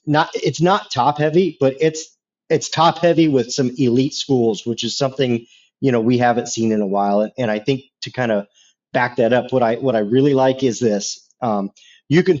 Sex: male